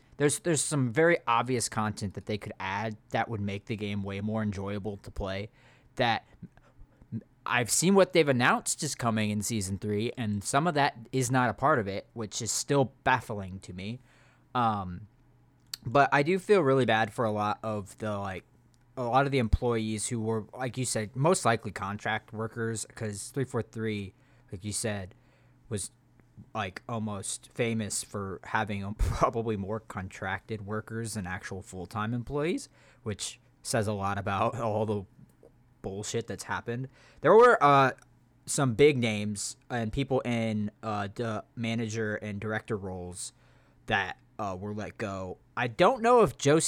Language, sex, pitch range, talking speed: English, male, 105-130 Hz, 165 wpm